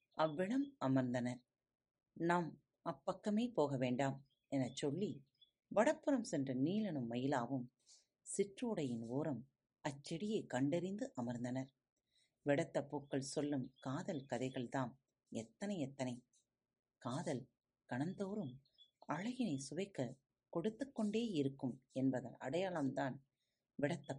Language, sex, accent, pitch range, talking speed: Tamil, female, native, 130-185 Hz, 75 wpm